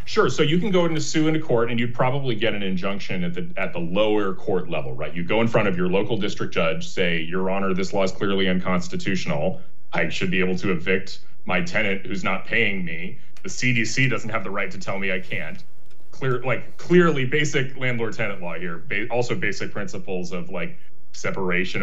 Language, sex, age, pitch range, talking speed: English, male, 30-49, 95-140 Hz, 215 wpm